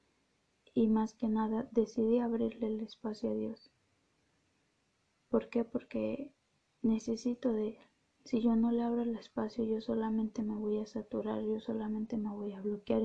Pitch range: 215-235 Hz